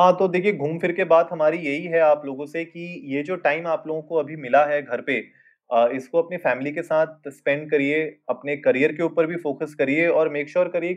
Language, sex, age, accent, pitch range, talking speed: Hindi, male, 20-39, native, 130-160 Hz, 240 wpm